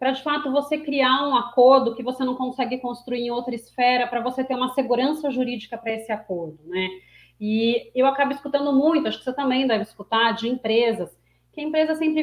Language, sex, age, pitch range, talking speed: Portuguese, female, 30-49, 225-290 Hz, 210 wpm